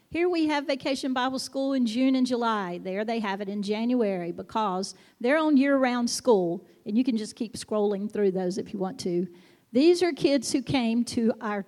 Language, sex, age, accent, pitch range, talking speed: English, female, 50-69, American, 210-260 Hz, 205 wpm